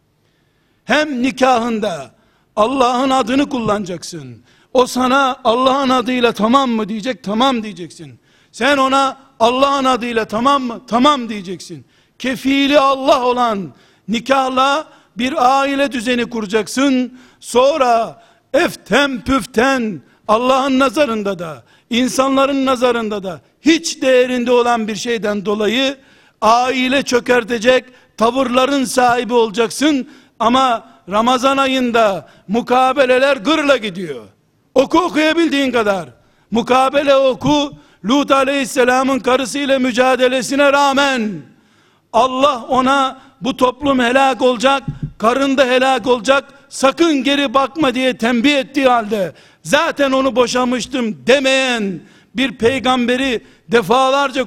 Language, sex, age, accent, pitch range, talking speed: Turkish, male, 60-79, native, 225-270 Hz, 100 wpm